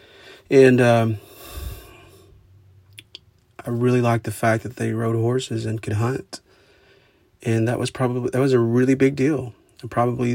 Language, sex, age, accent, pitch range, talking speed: English, male, 30-49, American, 110-125 Hz, 150 wpm